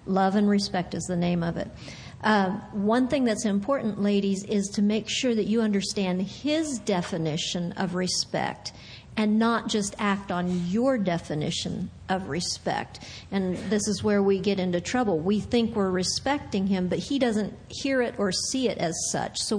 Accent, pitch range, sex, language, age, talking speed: American, 195-245 Hz, female, English, 50-69, 180 wpm